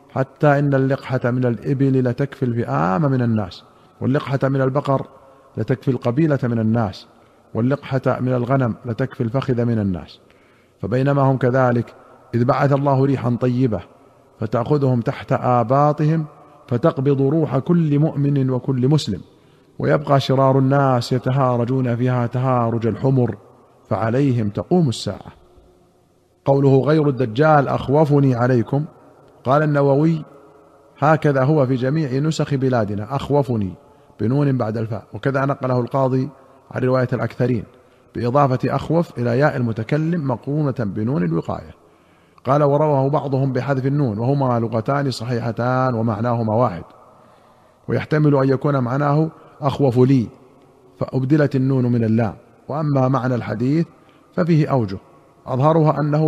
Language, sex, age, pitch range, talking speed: Arabic, male, 40-59, 120-140 Hz, 115 wpm